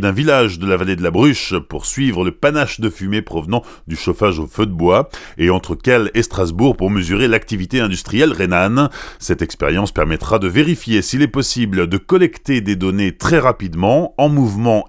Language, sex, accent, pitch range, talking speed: French, male, French, 95-130 Hz, 190 wpm